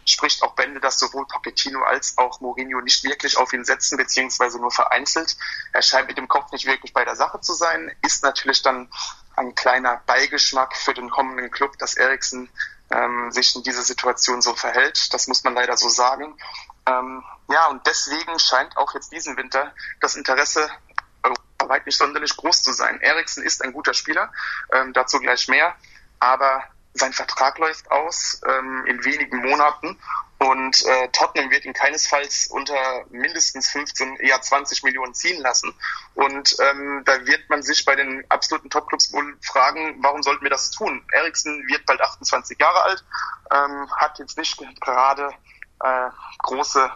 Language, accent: German, German